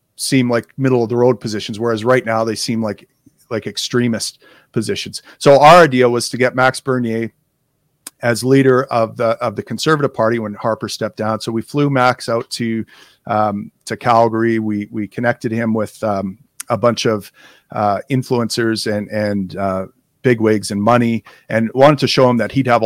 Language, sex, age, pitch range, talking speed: English, male, 40-59, 110-125 Hz, 185 wpm